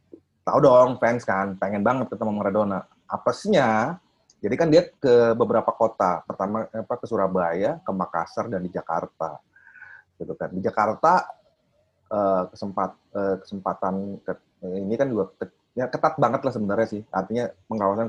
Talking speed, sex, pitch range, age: 135 wpm, male, 100-120 Hz, 30-49